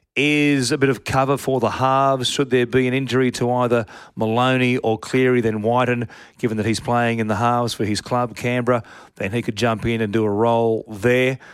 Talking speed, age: 215 wpm, 40-59